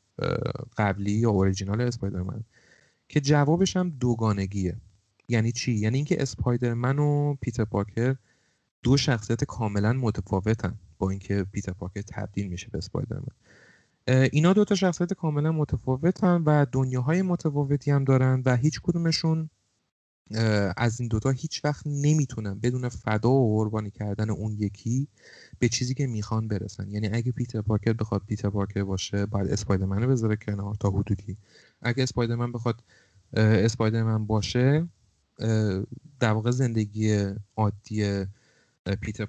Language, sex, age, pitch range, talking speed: Persian, male, 30-49, 100-130 Hz, 130 wpm